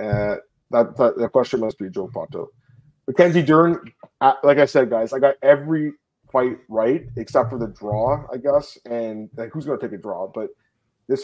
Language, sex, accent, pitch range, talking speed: English, male, American, 120-150 Hz, 185 wpm